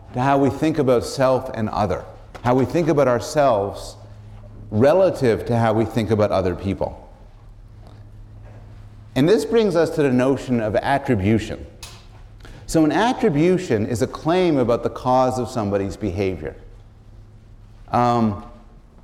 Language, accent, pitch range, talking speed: English, American, 105-140 Hz, 135 wpm